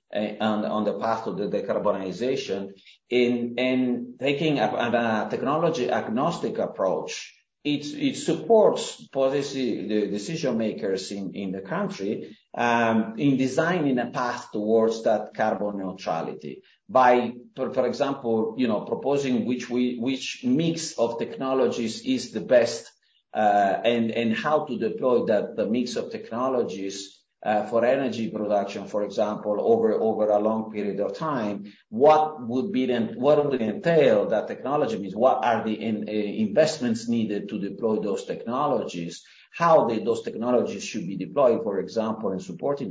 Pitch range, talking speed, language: 110-140 Hz, 145 wpm, English